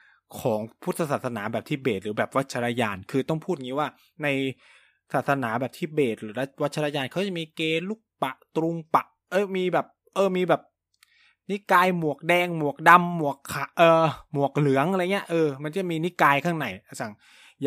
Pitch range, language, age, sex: 110-160 Hz, Thai, 20-39, male